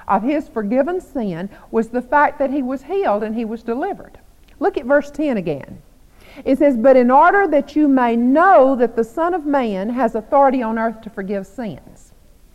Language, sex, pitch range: English, female, 195-275 Hz